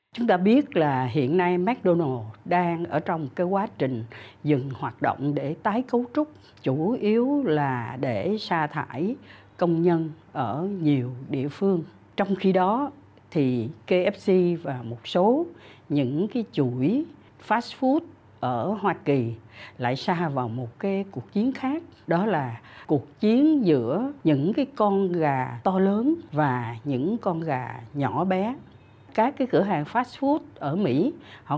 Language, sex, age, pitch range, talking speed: Vietnamese, female, 60-79, 140-210 Hz, 155 wpm